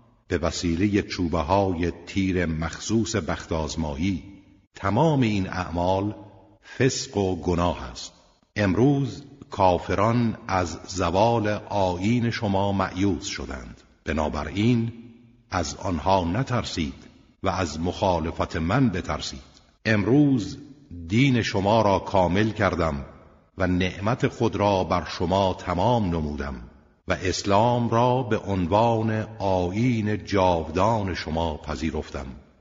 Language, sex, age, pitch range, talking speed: Persian, male, 60-79, 85-110 Hz, 100 wpm